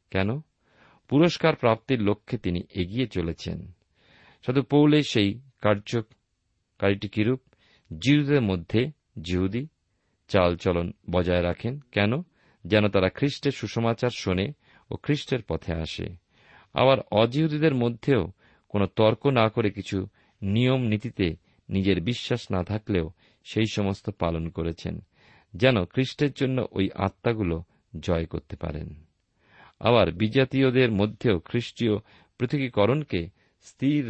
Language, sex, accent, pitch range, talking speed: Bengali, male, native, 90-125 Hz, 105 wpm